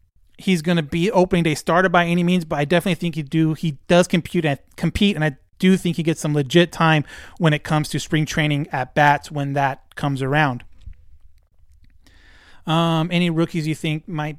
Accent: American